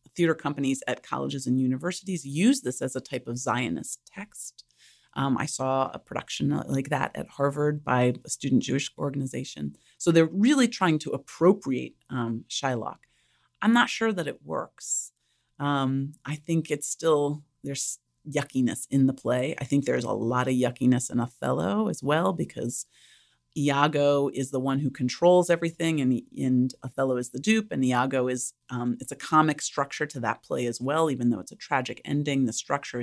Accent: American